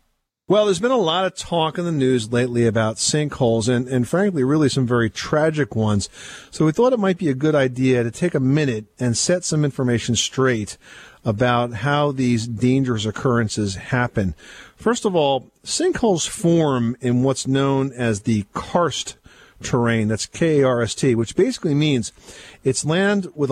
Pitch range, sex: 120-155 Hz, male